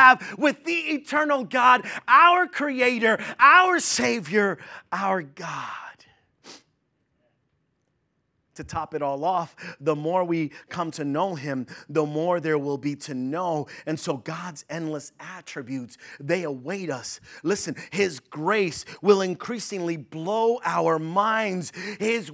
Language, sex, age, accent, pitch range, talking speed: English, male, 30-49, American, 155-220 Hz, 120 wpm